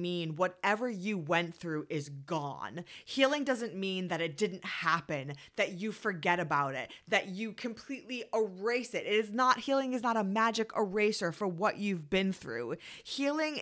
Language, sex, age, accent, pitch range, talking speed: English, female, 20-39, American, 165-225 Hz, 170 wpm